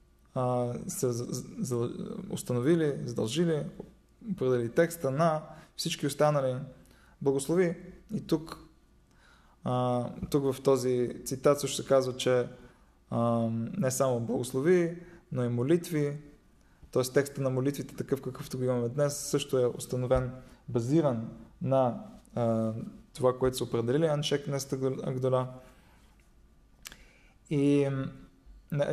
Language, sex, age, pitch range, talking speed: Bulgarian, male, 20-39, 125-150 Hz, 105 wpm